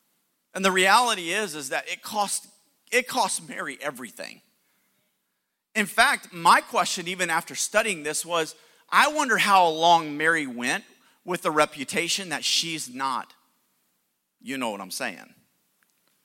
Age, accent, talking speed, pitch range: 40-59, American, 140 wpm, 165-225 Hz